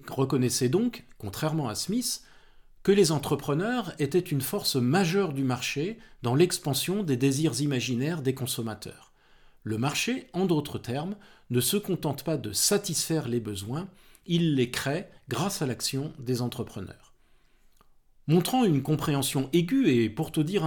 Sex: male